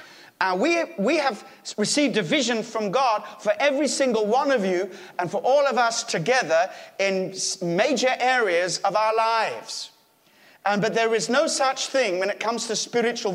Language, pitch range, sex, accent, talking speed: English, 155-230 Hz, male, British, 175 wpm